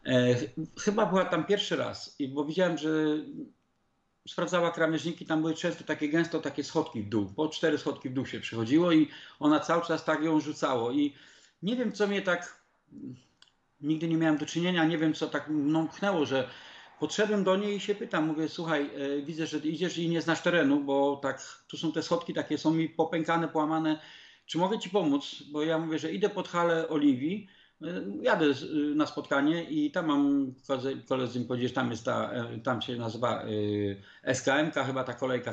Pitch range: 145-185 Hz